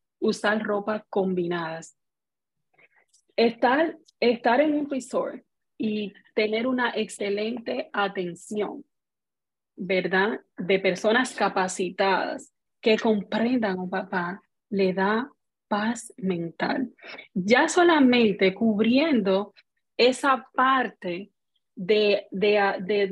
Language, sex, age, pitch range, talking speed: Spanish, female, 30-49, 195-260 Hz, 85 wpm